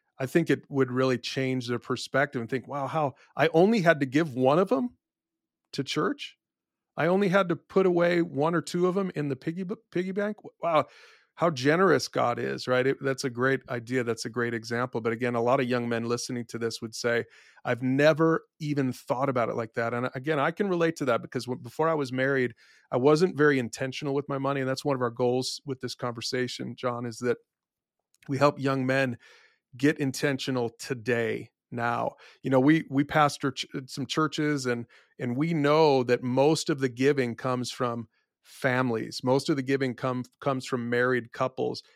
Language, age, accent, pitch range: English, 30-49, American, 125-145 Hz